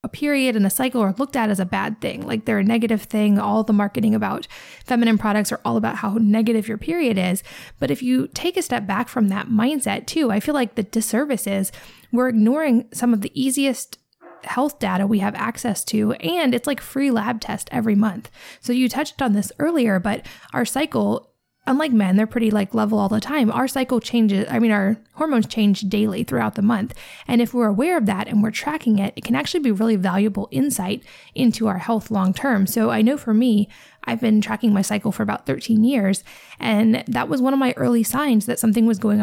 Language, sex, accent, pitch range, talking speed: English, female, American, 210-245 Hz, 225 wpm